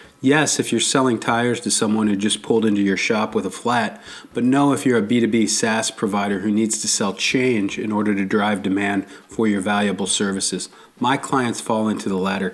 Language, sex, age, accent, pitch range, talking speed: English, male, 40-59, American, 100-120 Hz, 210 wpm